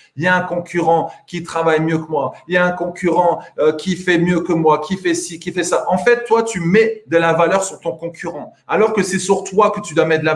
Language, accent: French, French